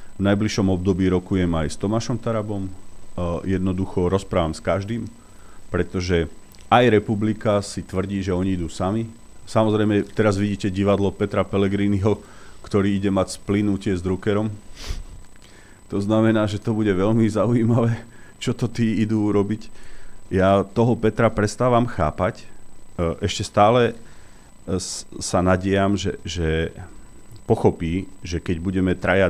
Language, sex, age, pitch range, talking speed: Slovak, male, 40-59, 90-110 Hz, 125 wpm